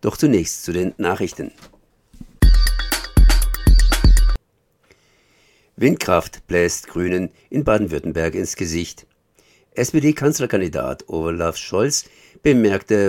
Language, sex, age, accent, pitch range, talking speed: German, male, 50-69, German, 85-105 Hz, 75 wpm